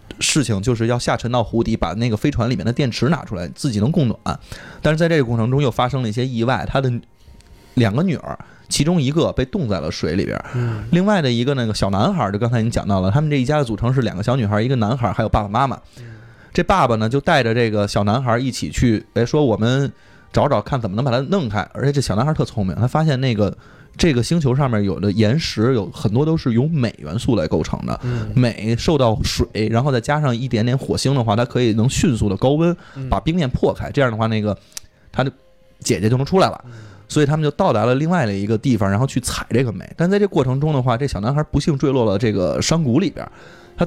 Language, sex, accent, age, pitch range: Chinese, male, native, 20-39, 110-145 Hz